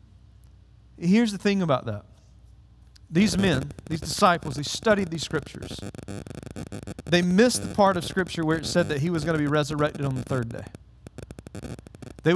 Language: English